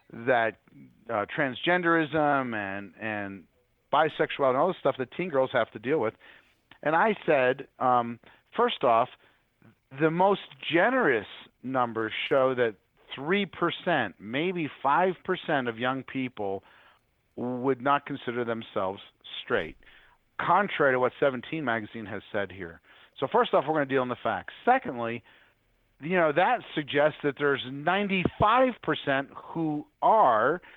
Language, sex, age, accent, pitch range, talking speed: English, male, 40-59, American, 120-170 Hz, 135 wpm